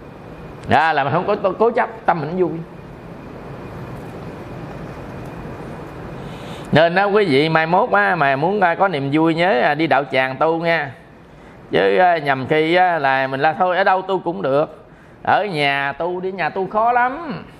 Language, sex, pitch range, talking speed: Vietnamese, male, 140-180 Hz, 165 wpm